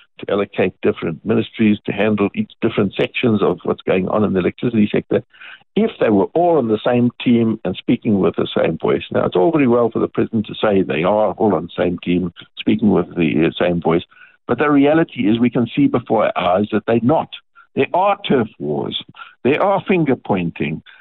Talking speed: 210 wpm